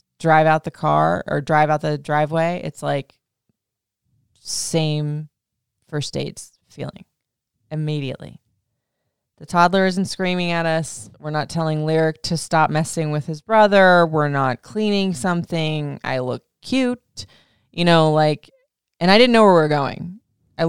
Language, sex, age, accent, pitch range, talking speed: English, female, 20-39, American, 150-175 Hz, 150 wpm